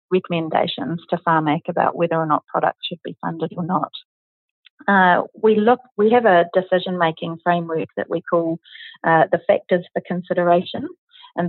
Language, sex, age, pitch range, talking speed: English, female, 40-59, 170-195 Hz, 160 wpm